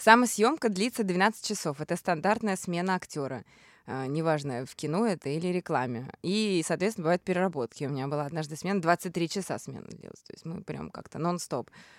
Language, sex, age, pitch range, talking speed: Russian, female, 20-39, 155-205 Hz, 170 wpm